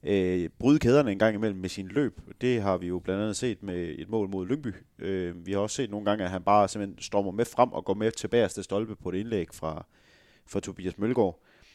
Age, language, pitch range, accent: 30-49, Danish, 95-120 Hz, native